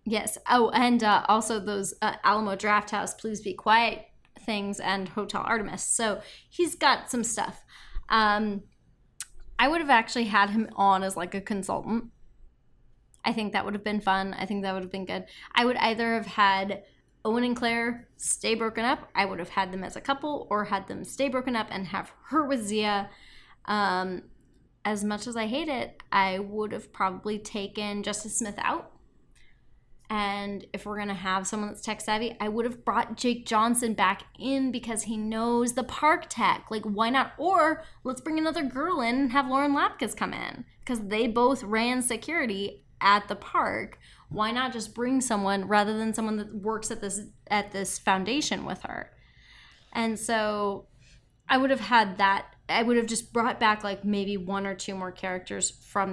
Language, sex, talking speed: English, female, 190 wpm